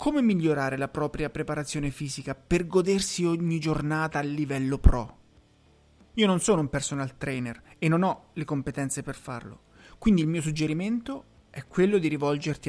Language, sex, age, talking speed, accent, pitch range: Italian, male, 30-49, 160 wpm, native, 140-175 Hz